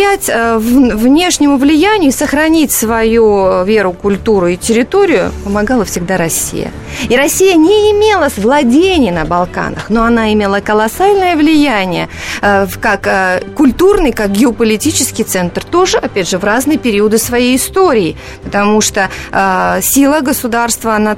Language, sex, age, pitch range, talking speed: Russian, female, 30-49, 185-260 Hz, 120 wpm